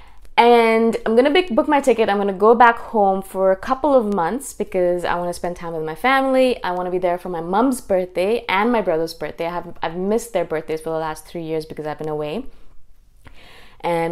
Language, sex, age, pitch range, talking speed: English, female, 20-39, 175-235 Hz, 230 wpm